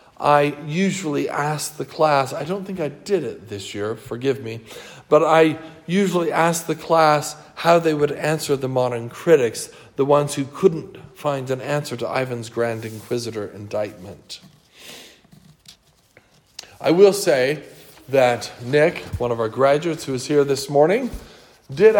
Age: 50-69